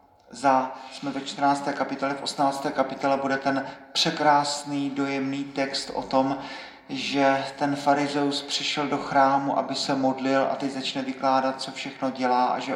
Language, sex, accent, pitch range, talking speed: Czech, male, native, 125-140 Hz, 155 wpm